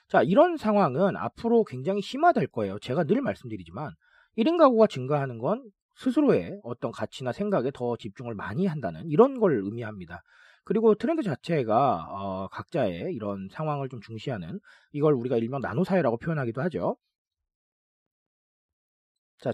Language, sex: Korean, male